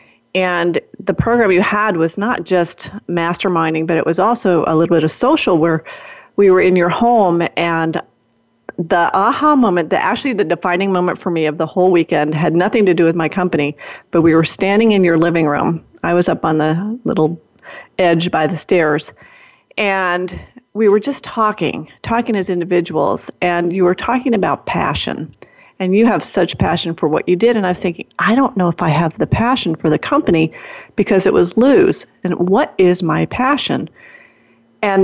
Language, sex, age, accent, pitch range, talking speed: English, female, 40-59, American, 165-210 Hz, 190 wpm